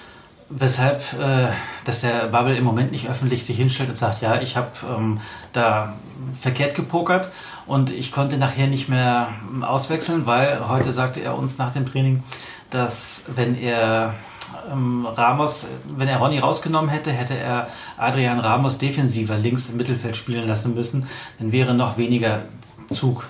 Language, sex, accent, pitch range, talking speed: German, male, German, 120-140 Hz, 150 wpm